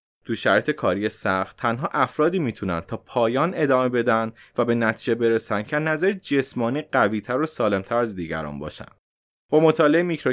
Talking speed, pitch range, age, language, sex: 155 wpm, 110-155 Hz, 20-39, Persian, male